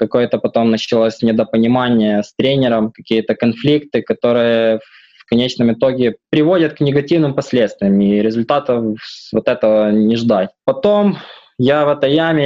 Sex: male